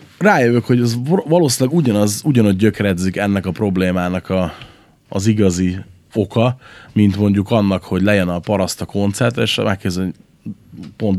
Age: 30-49